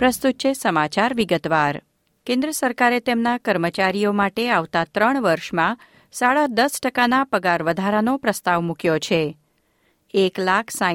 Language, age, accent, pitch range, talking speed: Gujarati, 50-69, native, 175-235 Hz, 105 wpm